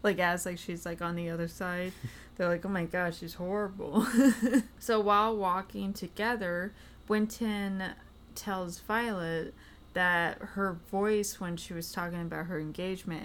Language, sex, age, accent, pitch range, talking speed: English, female, 20-39, American, 170-210 Hz, 150 wpm